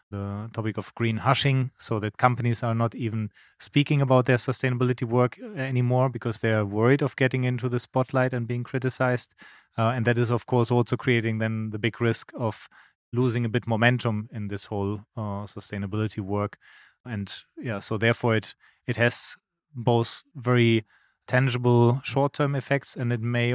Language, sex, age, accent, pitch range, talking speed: English, male, 30-49, German, 110-125 Hz, 170 wpm